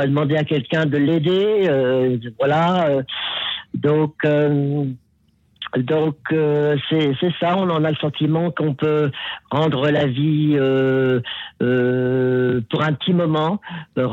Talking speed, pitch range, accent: 125 wpm, 135-165 Hz, French